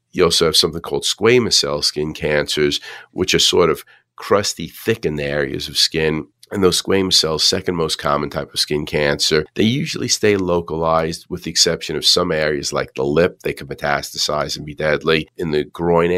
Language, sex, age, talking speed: English, male, 40-59, 195 wpm